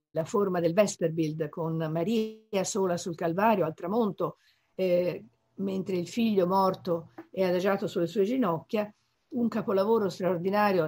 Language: Italian